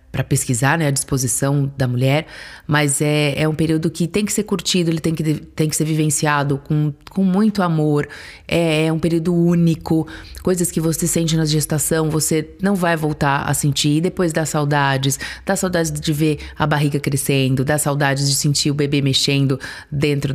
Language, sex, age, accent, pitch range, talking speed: Portuguese, female, 30-49, Brazilian, 150-180 Hz, 190 wpm